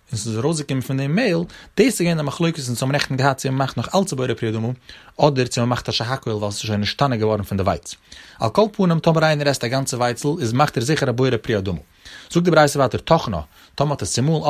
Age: 30-49